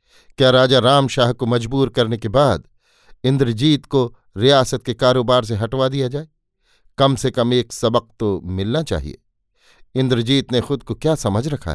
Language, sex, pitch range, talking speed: Hindi, male, 115-135 Hz, 170 wpm